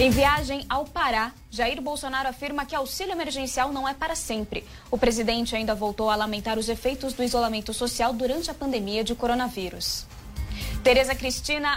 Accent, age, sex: Brazilian, 10-29, female